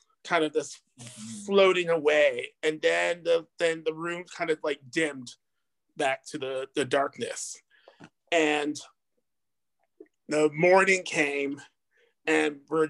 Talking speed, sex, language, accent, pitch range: 120 wpm, male, English, American, 150-190 Hz